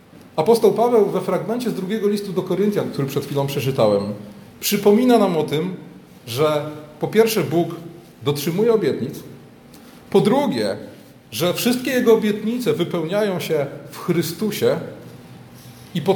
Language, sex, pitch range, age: Polish, male, 155-210 Hz, 40-59